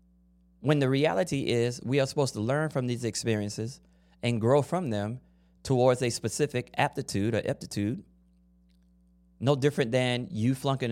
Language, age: English, 30-49